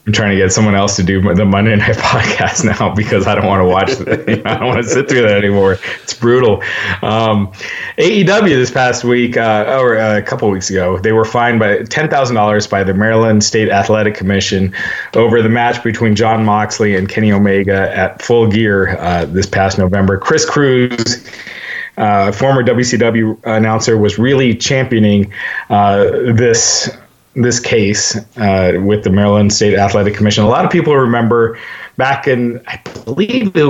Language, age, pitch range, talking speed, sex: English, 30-49, 100-115 Hz, 185 wpm, male